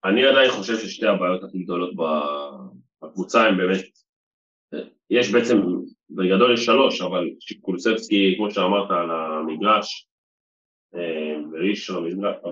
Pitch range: 85-120 Hz